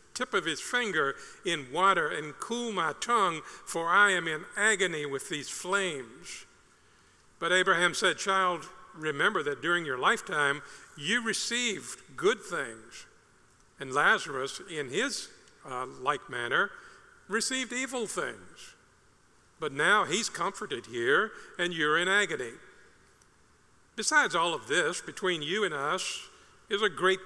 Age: 50-69